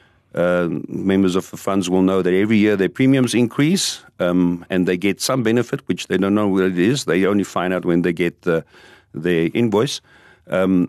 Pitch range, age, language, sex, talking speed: 90-110 Hz, 50-69, English, male, 205 wpm